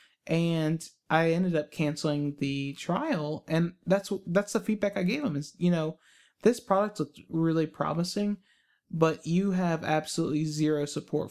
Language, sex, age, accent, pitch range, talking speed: English, male, 20-39, American, 150-180 Hz, 155 wpm